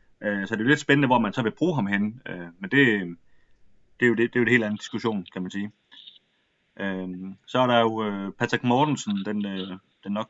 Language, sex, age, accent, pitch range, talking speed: Danish, male, 30-49, native, 100-125 Hz, 215 wpm